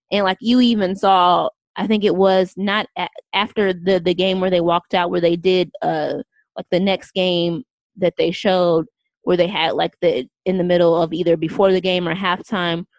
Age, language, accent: 20-39, English, American